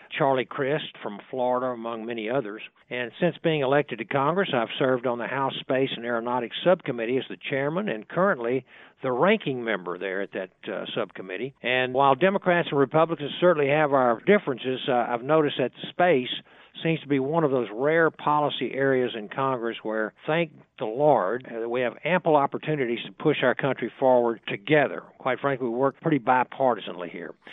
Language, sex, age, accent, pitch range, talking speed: English, male, 60-79, American, 120-150 Hz, 180 wpm